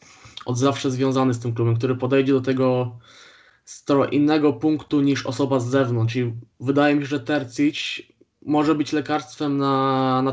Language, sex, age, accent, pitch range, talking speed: Polish, male, 20-39, native, 130-145 Hz, 155 wpm